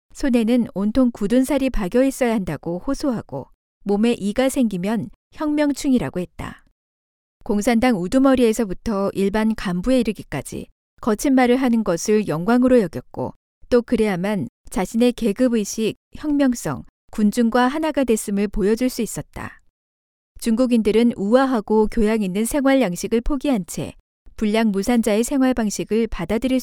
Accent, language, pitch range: native, Korean, 200-250 Hz